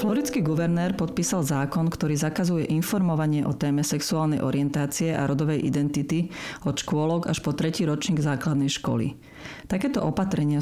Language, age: Slovak, 40-59